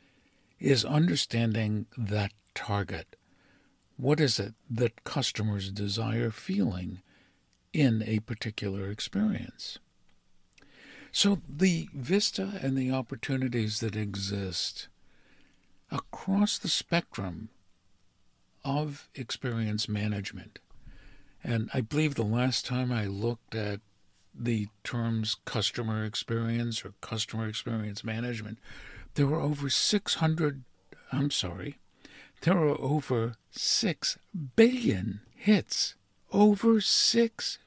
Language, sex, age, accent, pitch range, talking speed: English, male, 60-79, American, 105-150 Hz, 95 wpm